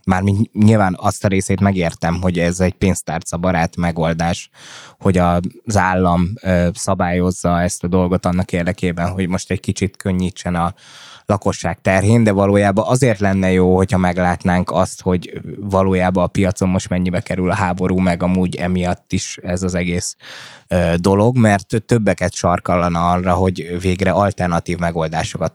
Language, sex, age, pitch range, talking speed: Hungarian, male, 20-39, 90-100 Hz, 145 wpm